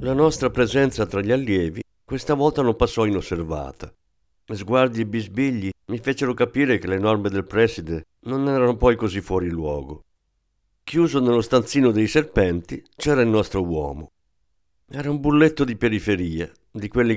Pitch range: 90-125 Hz